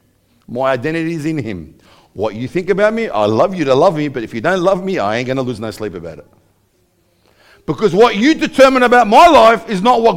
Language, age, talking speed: English, 50-69, 240 wpm